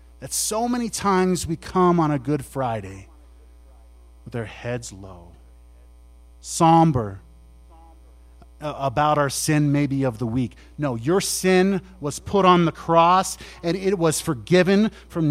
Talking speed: 140 wpm